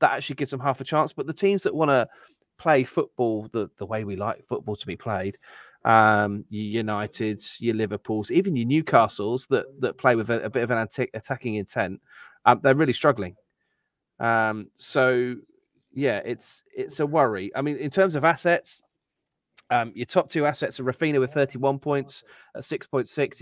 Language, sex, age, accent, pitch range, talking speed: English, male, 30-49, British, 110-140 Hz, 190 wpm